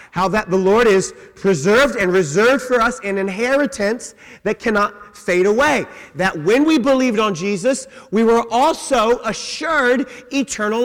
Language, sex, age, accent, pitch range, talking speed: English, male, 30-49, American, 200-265 Hz, 150 wpm